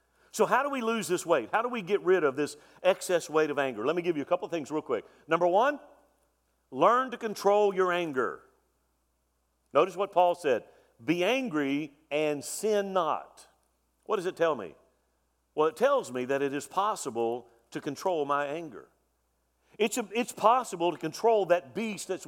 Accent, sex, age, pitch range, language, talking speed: American, male, 50-69, 140-205 Hz, English, 190 wpm